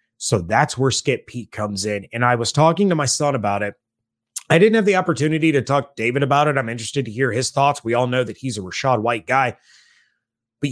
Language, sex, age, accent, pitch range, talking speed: English, male, 30-49, American, 115-150 Hz, 240 wpm